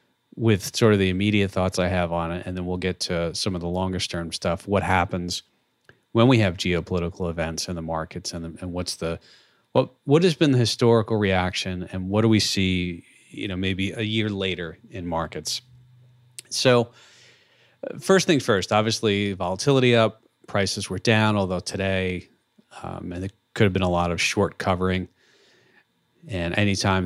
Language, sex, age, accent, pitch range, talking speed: English, male, 30-49, American, 90-110 Hz, 180 wpm